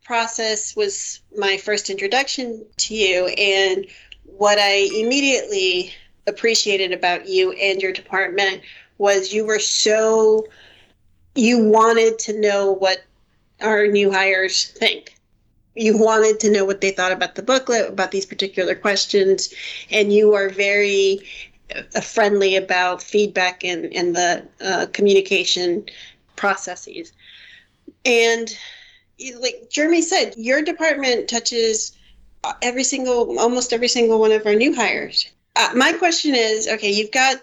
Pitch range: 195-250 Hz